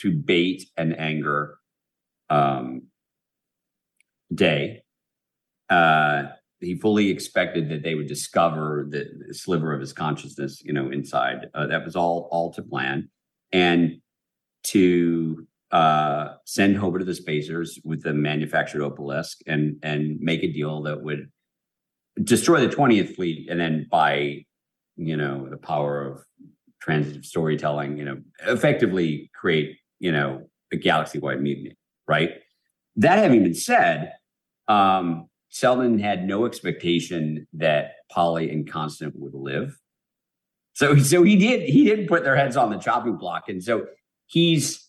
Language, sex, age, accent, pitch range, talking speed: English, male, 50-69, American, 75-105 Hz, 140 wpm